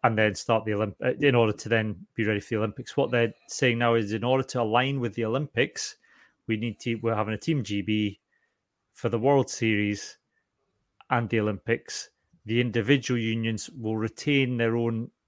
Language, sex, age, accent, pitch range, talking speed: English, male, 30-49, British, 110-135 Hz, 190 wpm